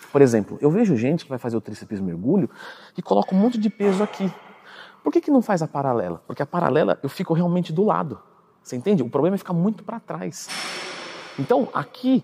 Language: Portuguese